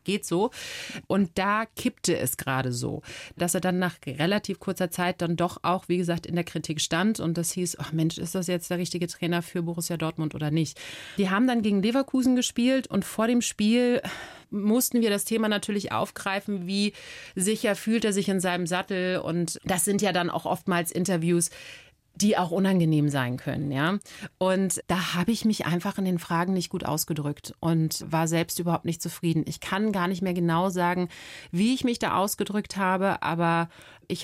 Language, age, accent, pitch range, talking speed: German, 30-49, German, 170-200 Hz, 195 wpm